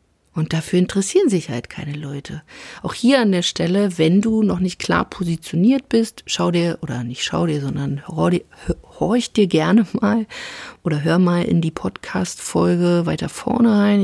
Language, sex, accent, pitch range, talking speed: German, female, German, 165-205 Hz, 165 wpm